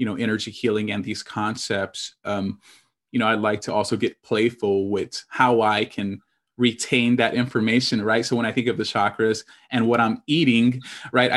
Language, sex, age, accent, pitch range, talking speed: English, male, 20-39, American, 105-125 Hz, 190 wpm